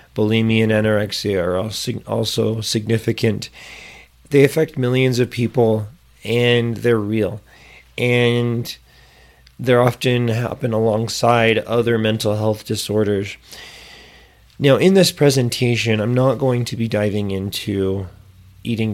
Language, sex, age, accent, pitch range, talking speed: English, male, 30-49, American, 105-125 Hz, 110 wpm